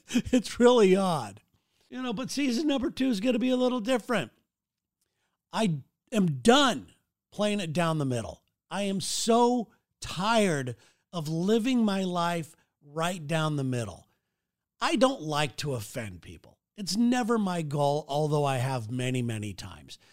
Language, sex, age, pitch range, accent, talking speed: English, male, 50-69, 155-245 Hz, American, 155 wpm